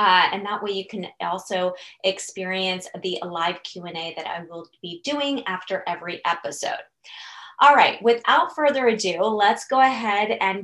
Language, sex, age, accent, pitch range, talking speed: English, female, 20-39, American, 190-245 Hz, 160 wpm